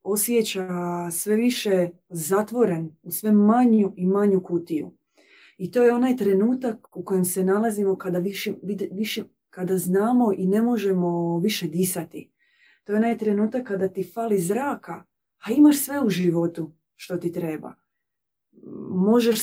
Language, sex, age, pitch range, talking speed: Croatian, female, 30-49, 175-215 Hz, 140 wpm